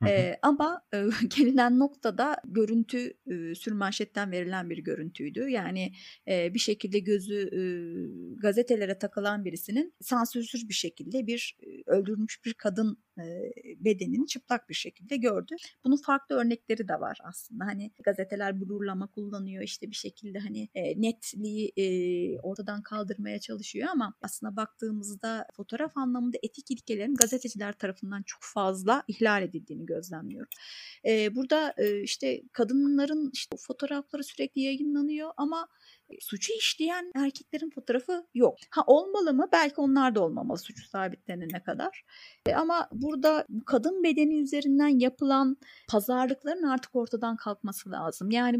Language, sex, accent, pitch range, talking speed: Turkish, female, native, 205-275 Hz, 130 wpm